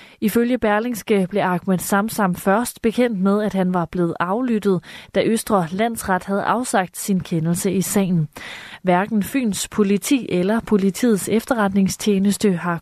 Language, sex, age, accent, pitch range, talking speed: Danish, female, 30-49, native, 185-220 Hz, 135 wpm